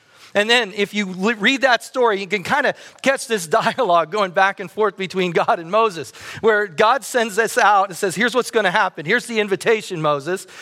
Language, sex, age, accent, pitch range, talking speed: English, male, 40-59, American, 200-250 Hz, 215 wpm